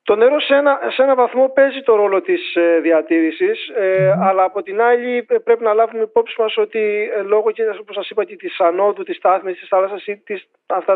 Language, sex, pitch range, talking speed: Greek, male, 175-265 Hz, 215 wpm